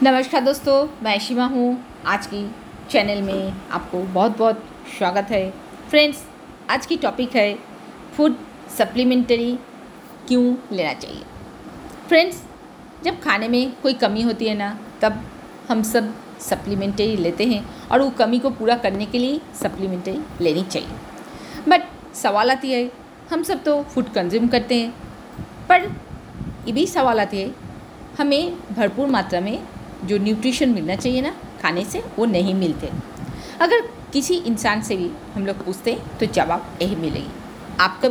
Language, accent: Hindi, native